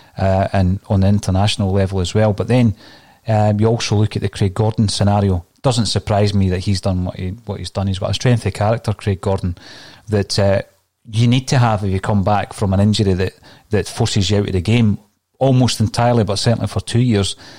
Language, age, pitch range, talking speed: English, 30-49, 100-115 Hz, 225 wpm